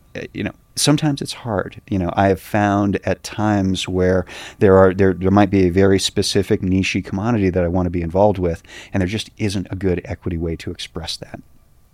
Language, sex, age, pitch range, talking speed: English, male, 30-49, 85-100 Hz, 210 wpm